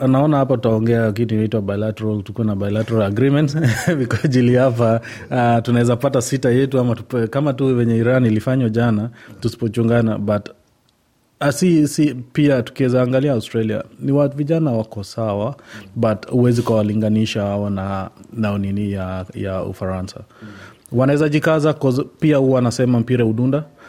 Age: 30-49